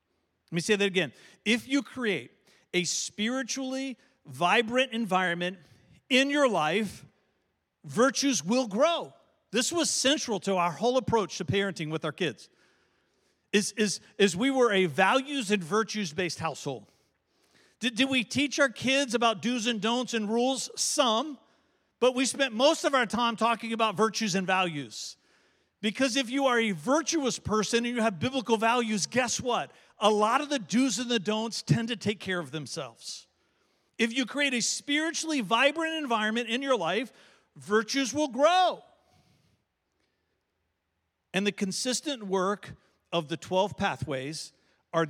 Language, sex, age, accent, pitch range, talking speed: English, male, 50-69, American, 180-255 Hz, 155 wpm